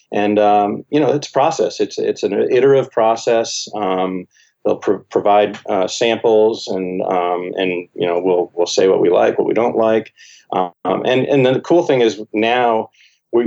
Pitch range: 95-125 Hz